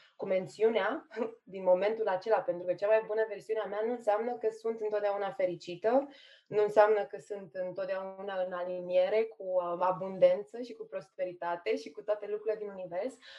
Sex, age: female, 20-39